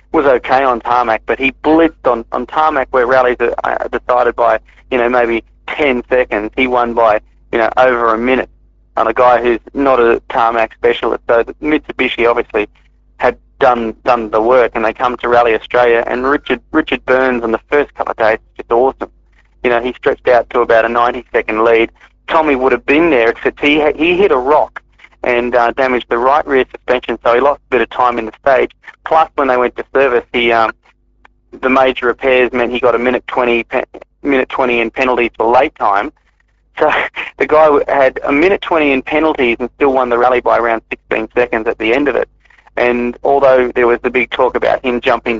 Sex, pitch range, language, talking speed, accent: male, 115-130 Hz, English, 210 wpm, Australian